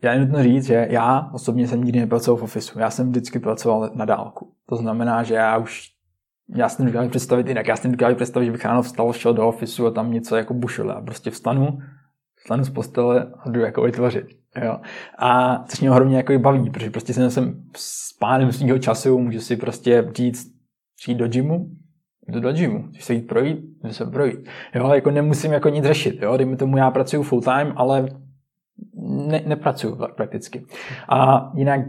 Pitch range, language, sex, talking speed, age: 120-140 Hz, Czech, male, 195 wpm, 20-39